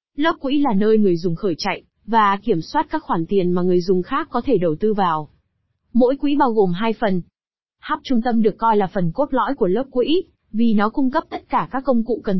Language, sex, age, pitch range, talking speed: Vietnamese, female, 20-39, 200-260 Hz, 245 wpm